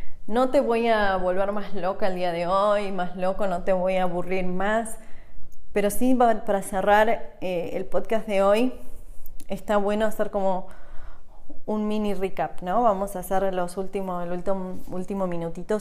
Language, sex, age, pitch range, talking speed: Spanish, female, 20-39, 190-235 Hz, 160 wpm